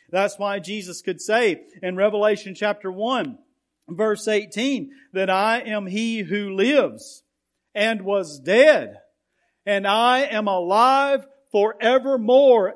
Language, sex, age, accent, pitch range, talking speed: English, male, 50-69, American, 185-255 Hz, 120 wpm